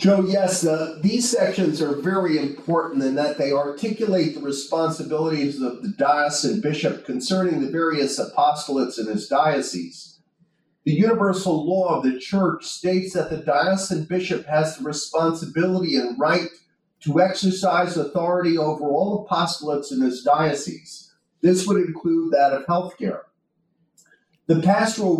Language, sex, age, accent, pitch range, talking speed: English, male, 50-69, American, 150-185 Hz, 140 wpm